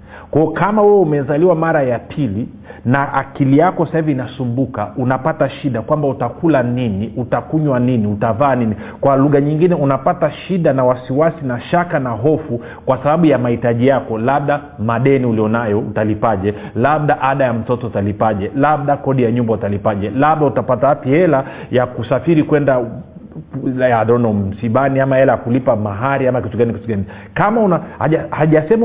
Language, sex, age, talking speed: Swahili, male, 40-59, 155 wpm